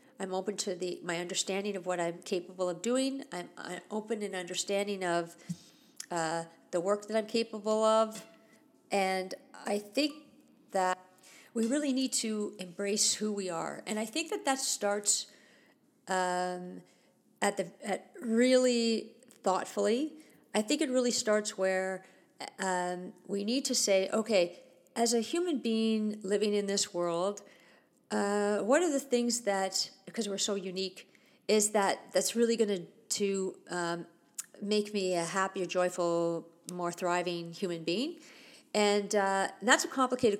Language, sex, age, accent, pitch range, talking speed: English, female, 50-69, American, 180-225 Hz, 150 wpm